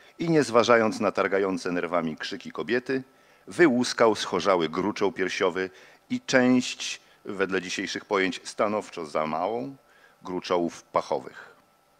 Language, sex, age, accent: Polish, male, 40-59, native